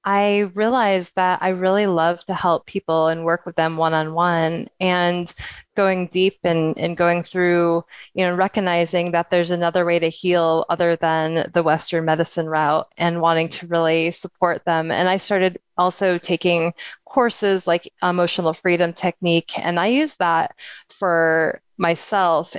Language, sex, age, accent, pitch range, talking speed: English, female, 20-39, American, 170-190 Hz, 160 wpm